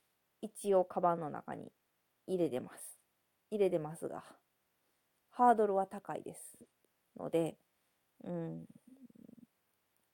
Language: Japanese